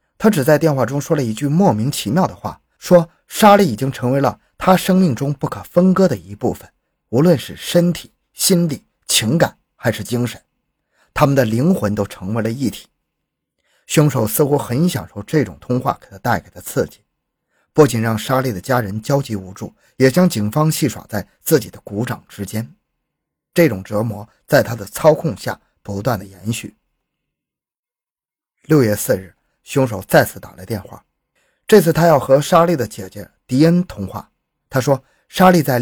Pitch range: 105-155 Hz